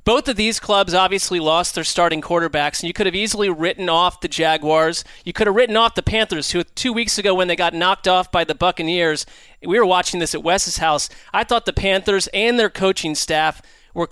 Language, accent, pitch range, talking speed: English, American, 170-215 Hz, 225 wpm